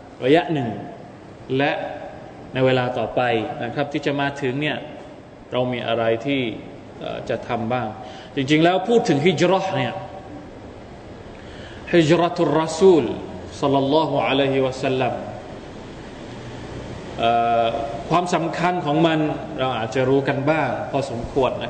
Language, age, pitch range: Thai, 20-39, 125-155 Hz